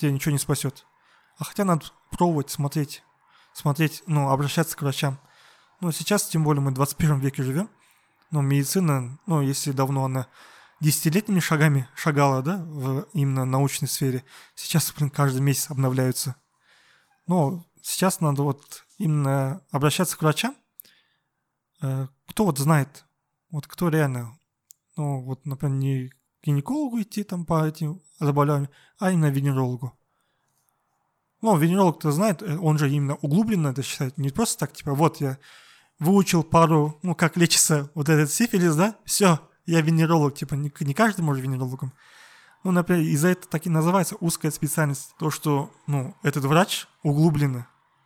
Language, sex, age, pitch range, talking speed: Russian, male, 20-39, 140-170 Hz, 145 wpm